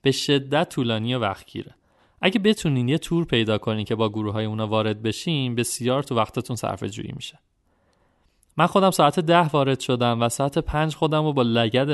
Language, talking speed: Persian, 185 wpm